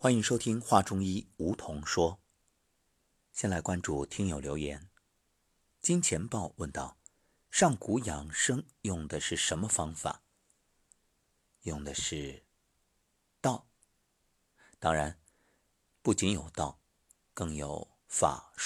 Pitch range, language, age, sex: 75-100 Hz, Chinese, 50-69, male